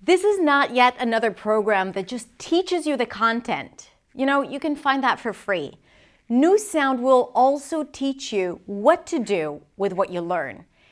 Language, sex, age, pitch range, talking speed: English, female, 30-49, 205-290 Hz, 180 wpm